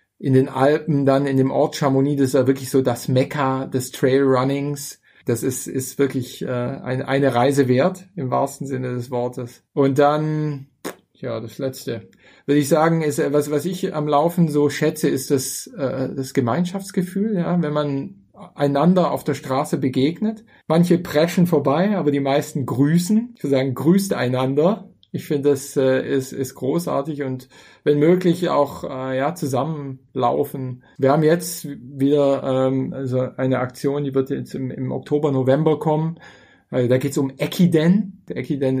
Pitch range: 135-160 Hz